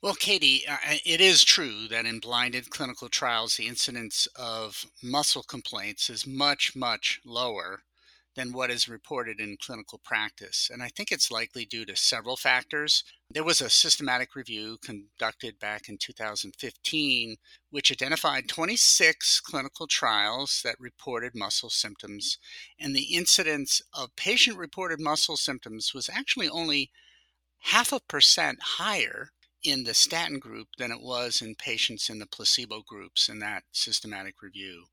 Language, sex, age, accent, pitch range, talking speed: English, male, 50-69, American, 115-165 Hz, 145 wpm